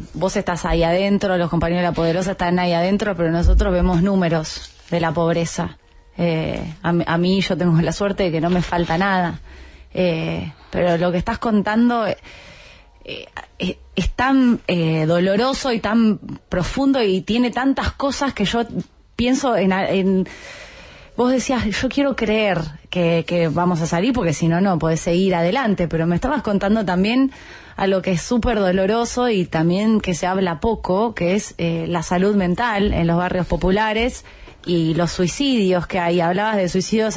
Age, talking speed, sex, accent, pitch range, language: 20-39, 180 wpm, female, Argentinian, 170-210 Hz, Spanish